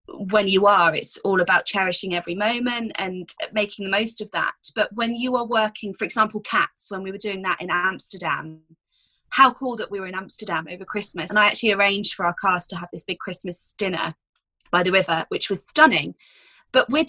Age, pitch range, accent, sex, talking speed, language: 20-39, 195-265 Hz, British, female, 210 wpm, English